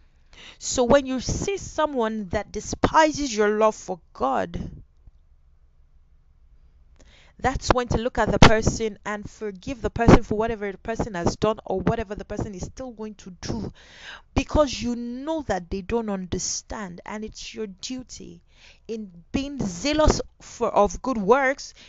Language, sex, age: English, female, 30-49